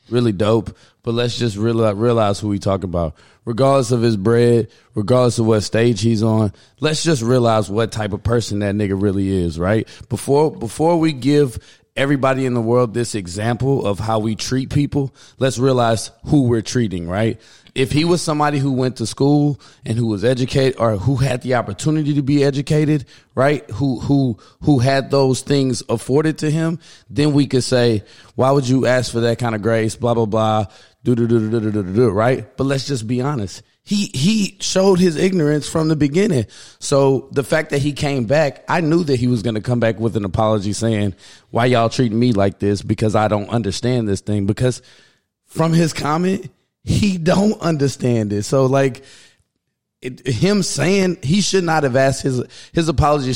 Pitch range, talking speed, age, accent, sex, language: 110-140 Hz, 200 wpm, 20-39, American, male, English